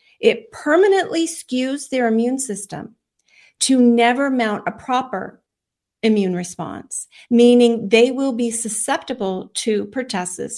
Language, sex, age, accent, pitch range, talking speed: English, female, 40-59, American, 210-250 Hz, 115 wpm